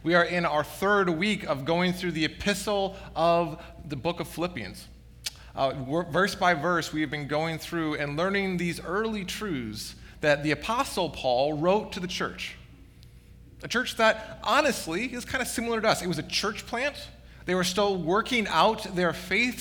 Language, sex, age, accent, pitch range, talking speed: English, male, 20-39, American, 145-205 Hz, 185 wpm